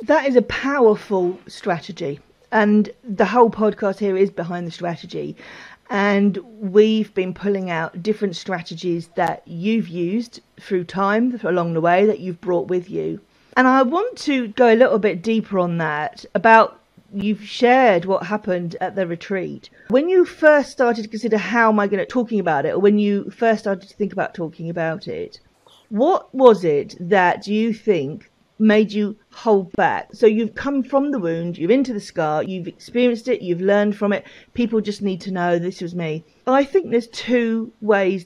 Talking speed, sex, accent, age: 185 wpm, female, British, 40-59